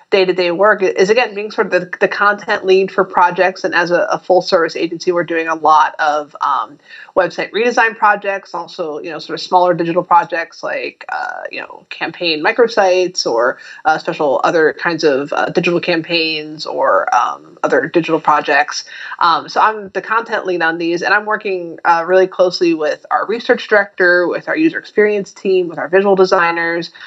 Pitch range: 165-195 Hz